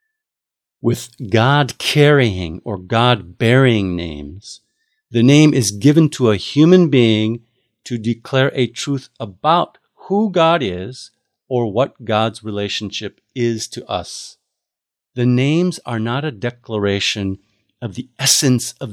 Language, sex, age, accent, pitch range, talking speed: English, male, 50-69, American, 105-135 Hz, 120 wpm